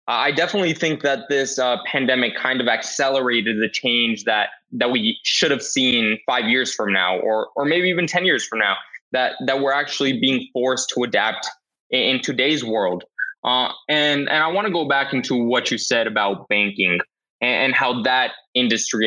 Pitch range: 115-145 Hz